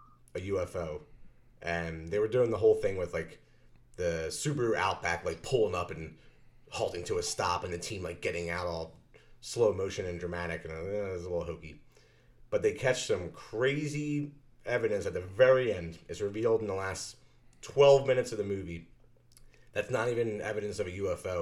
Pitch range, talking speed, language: 85-140 Hz, 190 wpm, English